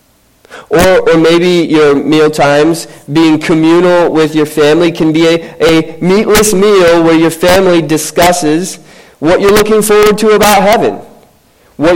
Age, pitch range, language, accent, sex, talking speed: 20-39, 140-175 Hz, English, American, male, 145 wpm